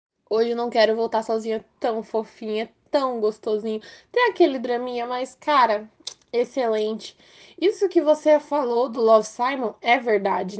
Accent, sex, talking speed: Brazilian, female, 140 wpm